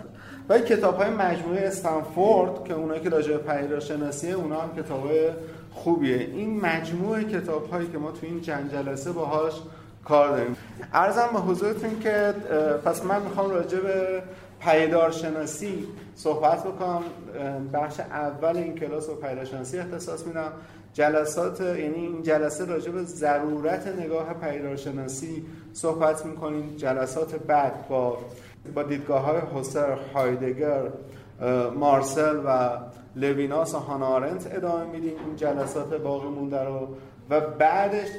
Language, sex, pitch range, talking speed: Persian, male, 140-170 Hz, 125 wpm